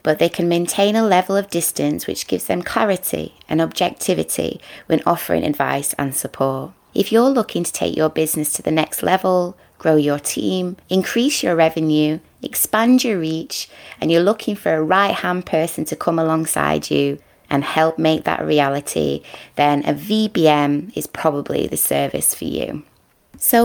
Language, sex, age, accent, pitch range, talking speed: English, female, 20-39, British, 150-195 Hz, 165 wpm